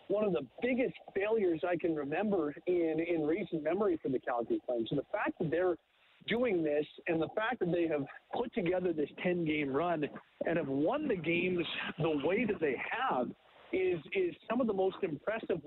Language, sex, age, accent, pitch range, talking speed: English, male, 40-59, American, 170-215 Hz, 195 wpm